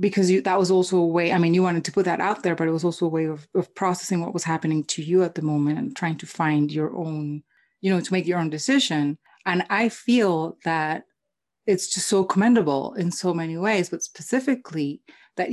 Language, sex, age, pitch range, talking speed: English, female, 30-49, 160-190 Hz, 230 wpm